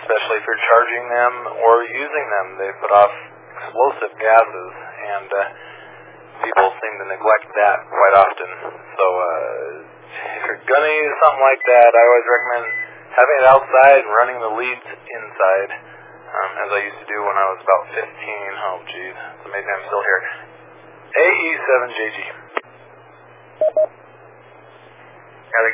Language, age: English, 40-59